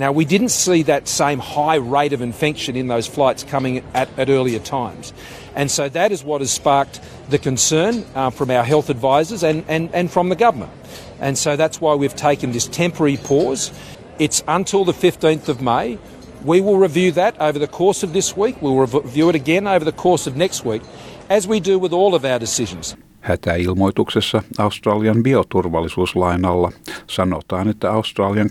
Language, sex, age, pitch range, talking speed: Finnish, male, 50-69, 95-150 Hz, 180 wpm